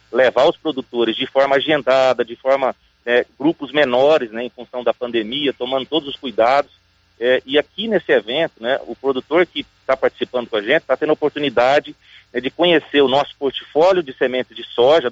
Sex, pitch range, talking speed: male, 125-160 Hz, 190 wpm